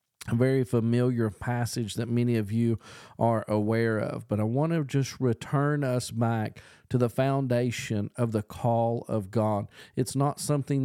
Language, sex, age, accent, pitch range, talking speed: English, male, 40-59, American, 115-130 Hz, 165 wpm